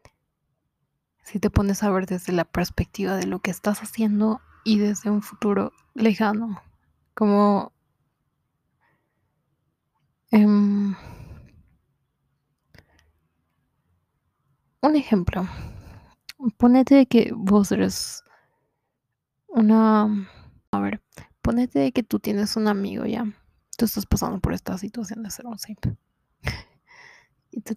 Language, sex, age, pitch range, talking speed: Spanish, female, 20-39, 195-220 Hz, 105 wpm